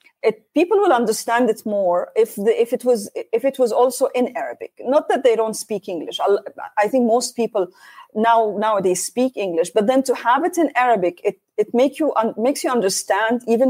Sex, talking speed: female, 210 wpm